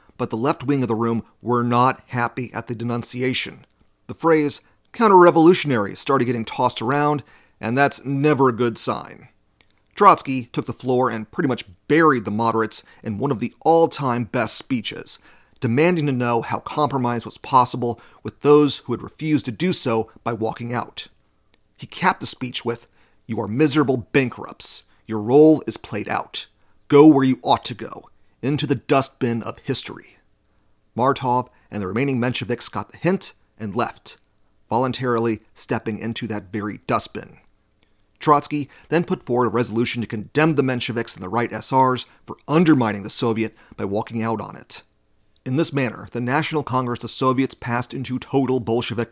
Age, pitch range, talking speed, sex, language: 40-59, 115-140 Hz, 170 wpm, male, English